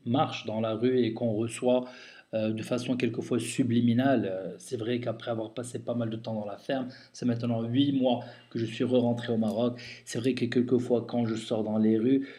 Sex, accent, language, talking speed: male, French, French, 215 wpm